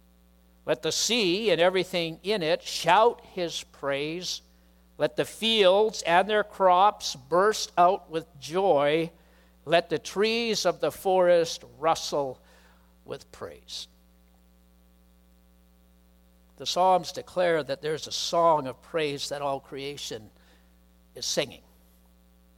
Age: 60-79